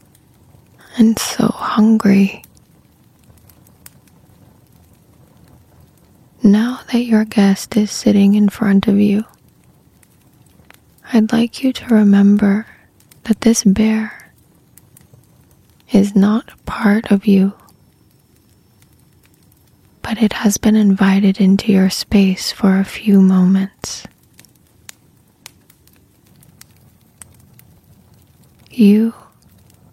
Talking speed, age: 80 wpm, 20-39